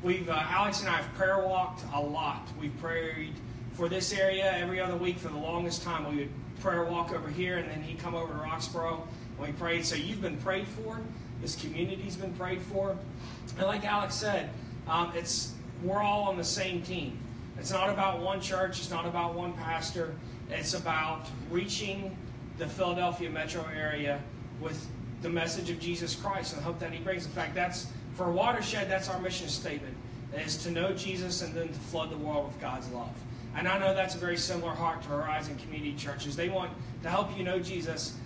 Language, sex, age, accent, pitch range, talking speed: English, male, 30-49, American, 140-180 Hz, 205 wpm